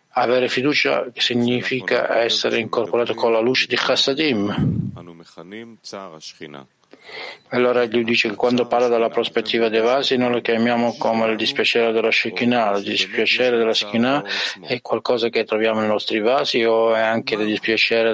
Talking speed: 145 wpm